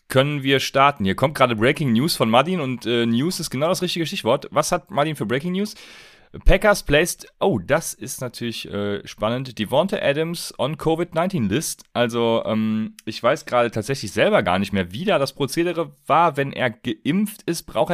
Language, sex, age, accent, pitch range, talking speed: German, male, 30-49, German, 105-145 Hz, 190 wpm